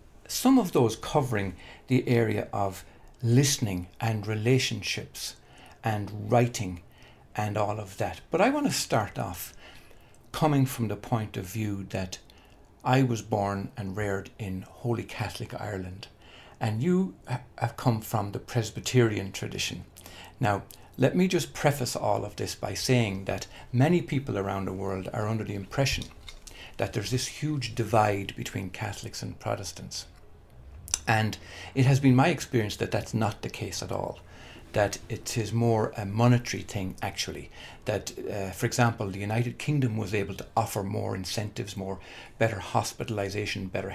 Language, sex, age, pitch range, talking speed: English, male, 60-79, 95-120 Hz, 155 wpm